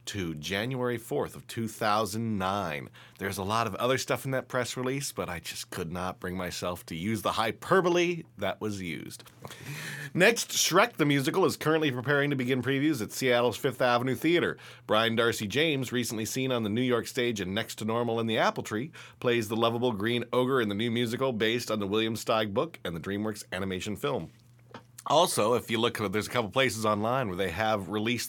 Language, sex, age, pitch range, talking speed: English, male, 40-59, 105-130 Hz, 200 wpm